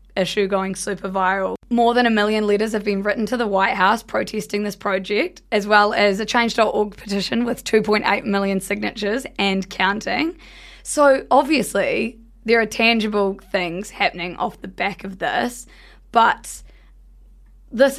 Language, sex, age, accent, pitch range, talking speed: English, female, 20-39, Australian, 200-235 Hz, 150 wpm